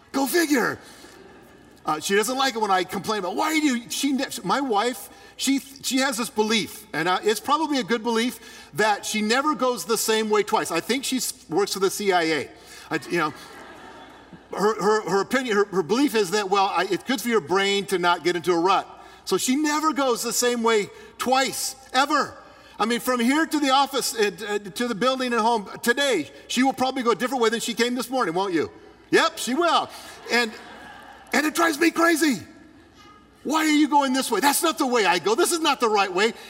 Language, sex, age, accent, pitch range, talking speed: English, male, 50-69, American, 190-270 Hz, 220 wpm